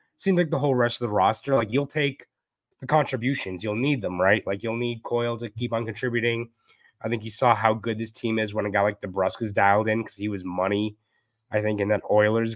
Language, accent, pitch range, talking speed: English, American, 105-130 Hz, 245 wpm